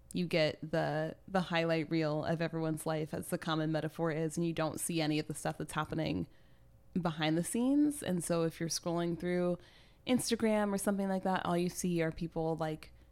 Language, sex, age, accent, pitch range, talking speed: English, female, 20-39, American, 160-185 Hz, 200 wpm